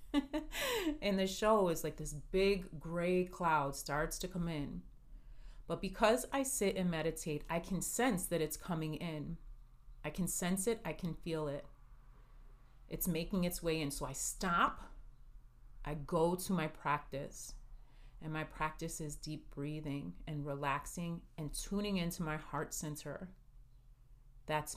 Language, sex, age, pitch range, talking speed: English, female, 30-49, 145-185 Hz, 150 wpm